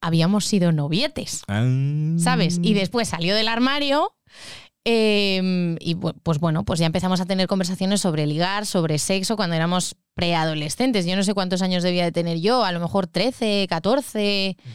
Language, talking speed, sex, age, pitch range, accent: Spanish, 165 wpm, female, 20-39, 175-230 Hz, Spanish